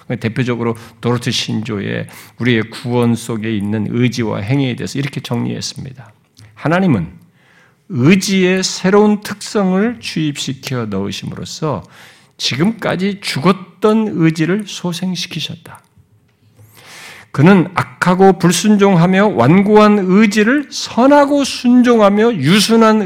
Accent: native